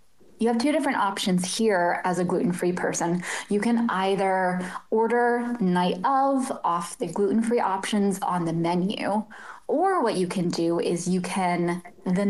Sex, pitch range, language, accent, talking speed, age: female, 180-240 Hz, English, American, 155 wpm, 20-39